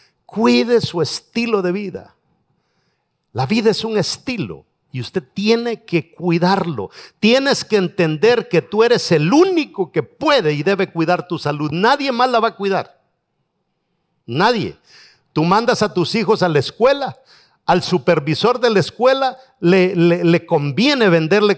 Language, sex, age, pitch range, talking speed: English, male, 50-69, 155-210 Hz, 155 wpm